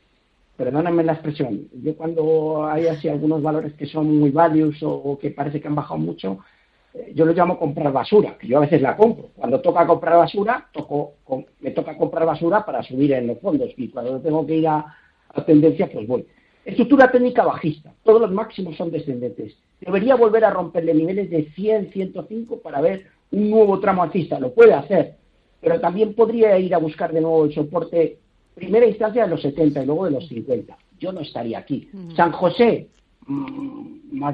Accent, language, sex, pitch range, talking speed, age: Spanish, Spanish, male, 155-215 Hz, 185 wpm, 50-69